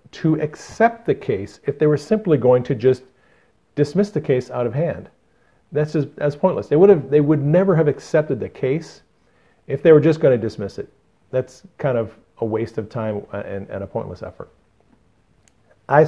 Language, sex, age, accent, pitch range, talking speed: English, male, 40-59, American, 115-150 Hz, 190 wpm